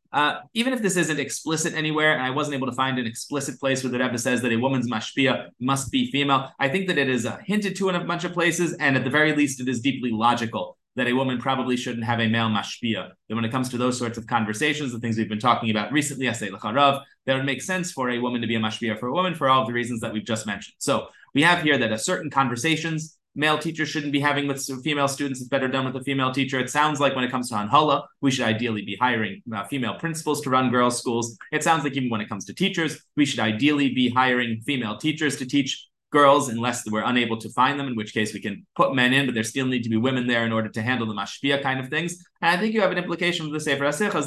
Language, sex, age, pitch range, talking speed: English, male, 20-39, 120-150 Hz, 275 wpm